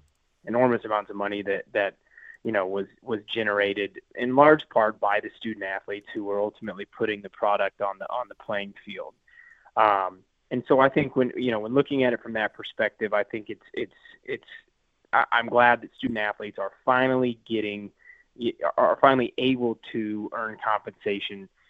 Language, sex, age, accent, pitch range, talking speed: English, male, 20-39, American, 100-125 Hz, 180 wpm